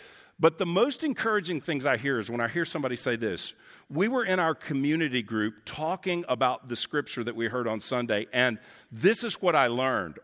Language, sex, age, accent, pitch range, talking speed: English, male, 40-59, American, 130-175 Hz, 205 wpm